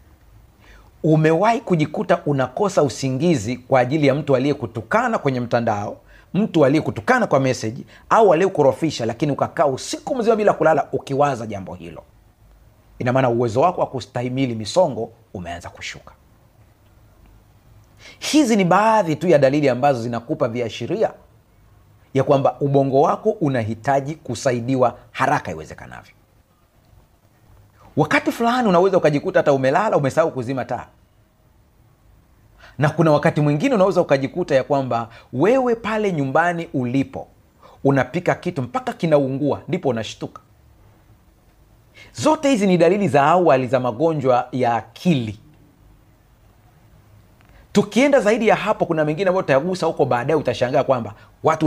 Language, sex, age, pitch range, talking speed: Swahili, male, 30-49, 110-160 Hz, 115 wpm